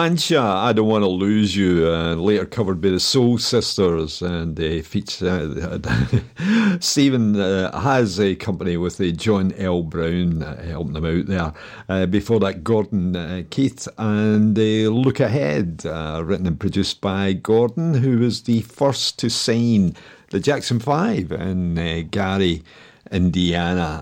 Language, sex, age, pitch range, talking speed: English, male, 50-69, 90-120 Hz, 155 wpm